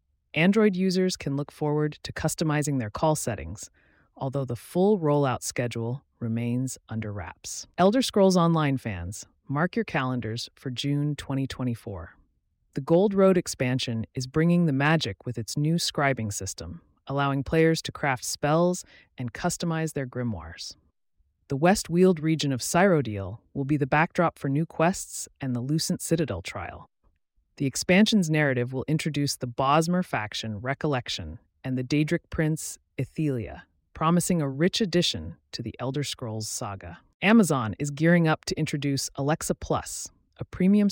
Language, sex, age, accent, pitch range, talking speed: English, female, 30-49, American, 115-165 Hz, 145 wpm